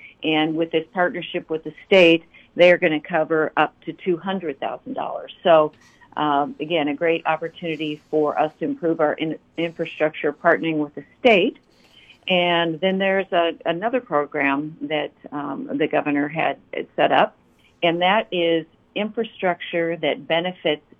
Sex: female